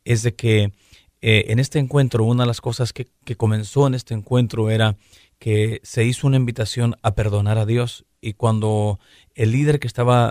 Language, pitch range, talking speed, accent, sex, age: Spanish, 110-130 Hz, 190 wpm, Mexican, male, 40-59